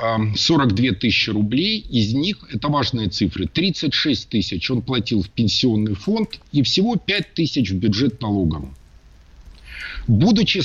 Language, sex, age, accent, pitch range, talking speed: Russian, male, 50-69, native, 115-180 Hz, 130 wpm